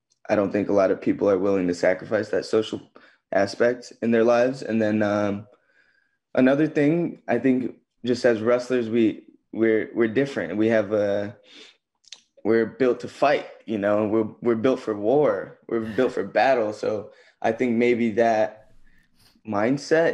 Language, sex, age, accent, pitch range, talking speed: English, male, 20-39, American, 110-130 Hz, 165 wpm